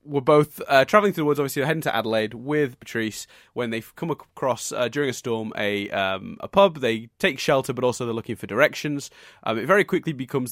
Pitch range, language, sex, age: 110-135 Hz, English, male, 20-39